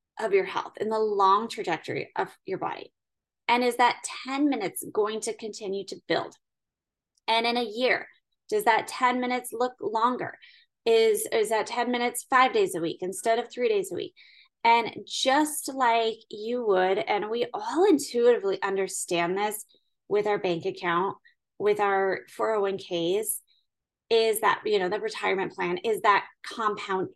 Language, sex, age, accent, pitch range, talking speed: English, female, 20-39, American, 200-285 Hz, 160 wpm